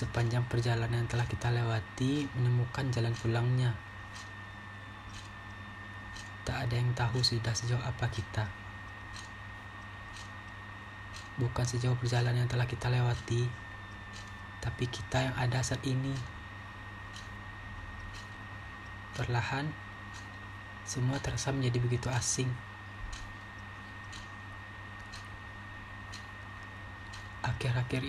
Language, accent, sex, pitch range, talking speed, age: Indonesian, native, male, 100-125 Hz, 80 wpm, 30-49